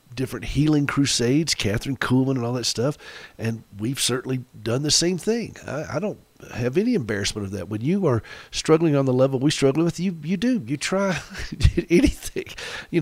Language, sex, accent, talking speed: English, male, American, 190 wpm